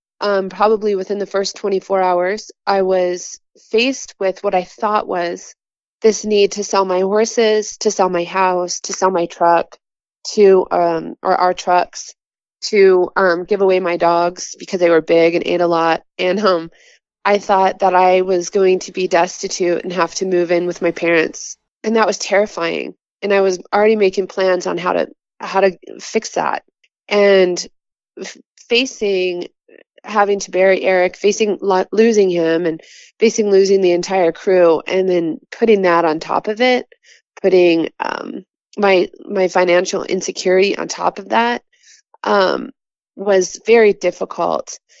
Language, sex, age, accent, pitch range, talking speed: English, female, 20-39, American, 180-205 Hz, 165 wpm